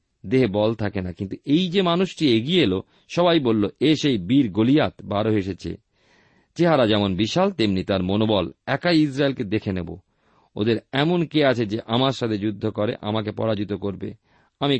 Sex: male